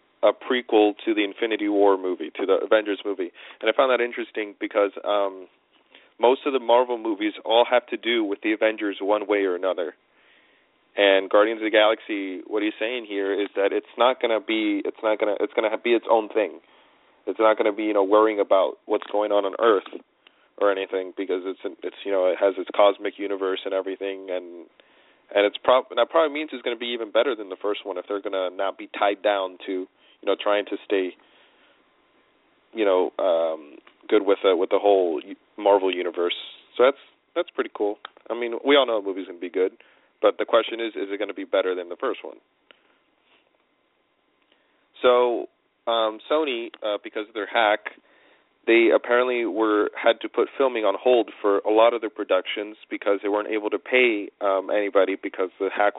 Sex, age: male, 40-59